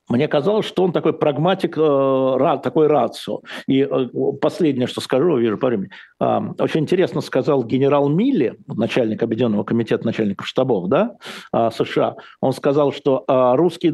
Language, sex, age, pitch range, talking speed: Russian, male, 60-79, 140-205 Hz, 150 wpm